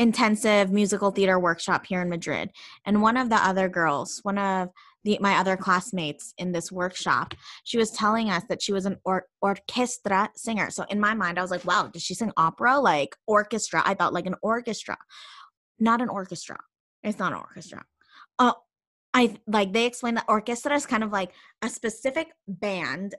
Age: 20-39